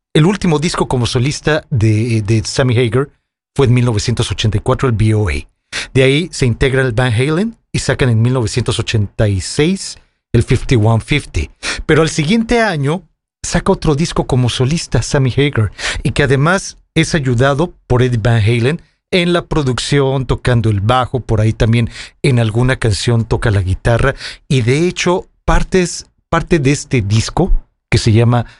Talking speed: 150 wpm